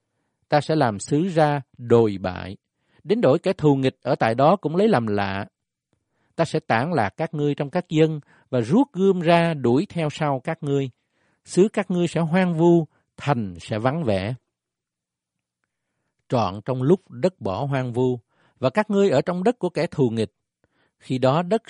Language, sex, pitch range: Vietnamese, male, 115-170 Hz